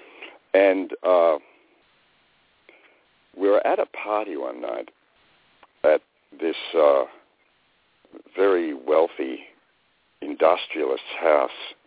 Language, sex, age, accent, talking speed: English, male, 60-79, American, 80 wpm